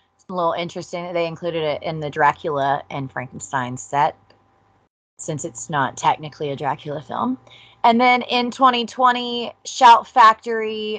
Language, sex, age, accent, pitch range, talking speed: English, female, 20-39, American, 160-210 Hz, 140 wpm